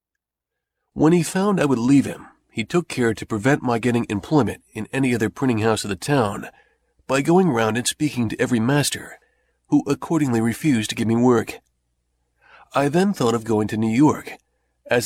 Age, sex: 40-59, male